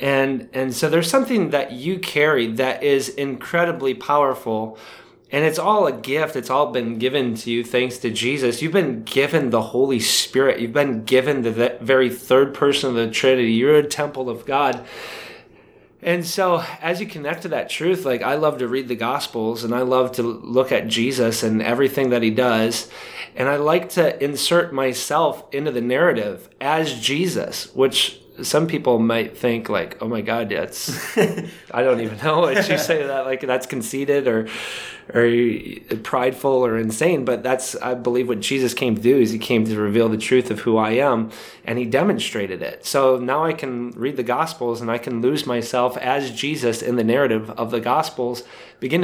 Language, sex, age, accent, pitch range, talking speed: English, male, 30-49, American, 120-140 Hz, 190 wpm